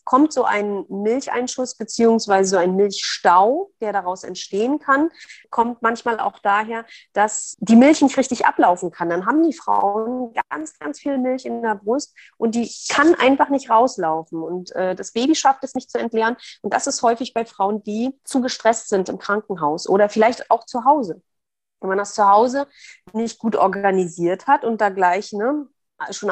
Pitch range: 185-255 Hz